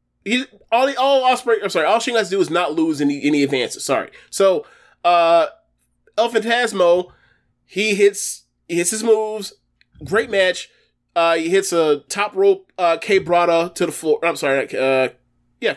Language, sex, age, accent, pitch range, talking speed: English, male, 20-39, American, 145-200 Hz, 175 wpm